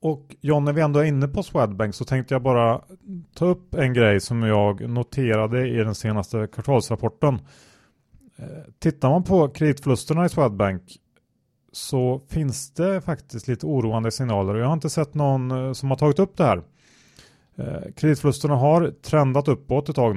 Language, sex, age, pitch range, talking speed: Swedish, male, 30-49, 105-135 Hz, 160 wpm